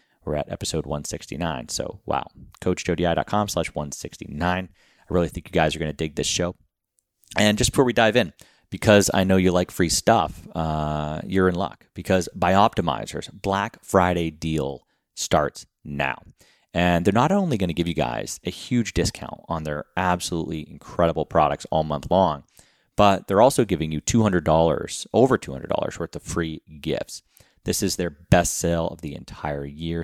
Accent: American